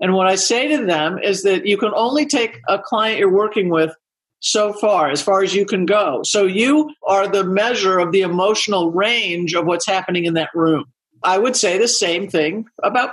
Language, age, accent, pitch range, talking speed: English, 50-69, American, 190-280 Hz, 215 wpm